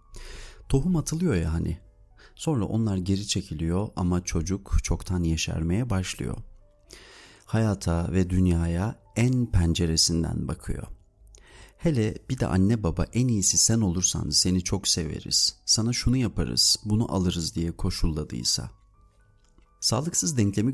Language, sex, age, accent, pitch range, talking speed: Turkish, male, 40-59, native, 85-105 Hz, 115 wpm